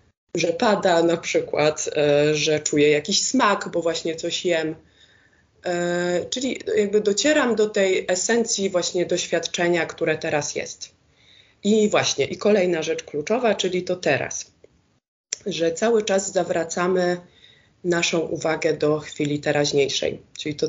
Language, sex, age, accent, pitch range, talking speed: Polish, female, 20-39, native, 155-205 Hz, 125 wpm